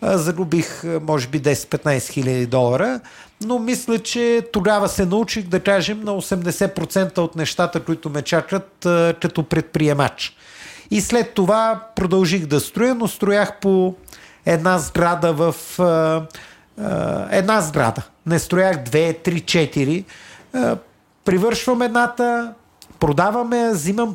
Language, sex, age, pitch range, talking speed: Bulgarian, male, 50-69, 150-200 Hz, 115 wpm